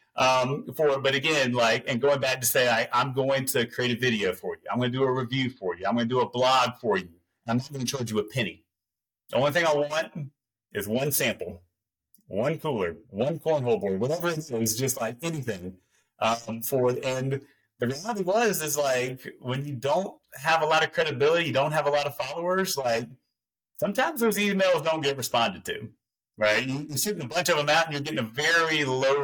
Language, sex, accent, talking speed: English, male, American, 220 wpm